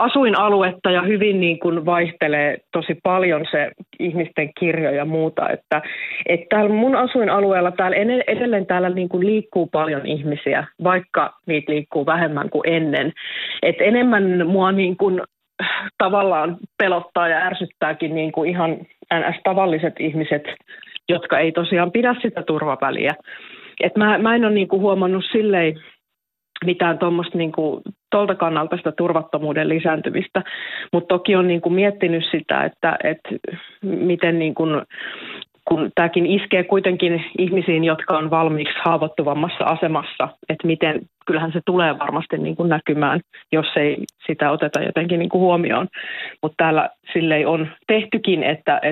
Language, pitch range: Finnish, 155-190 Hz